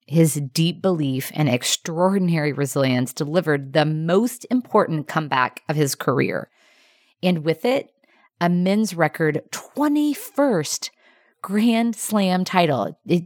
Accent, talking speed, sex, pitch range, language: American, 110 wpm, female, 160-240 Hz, English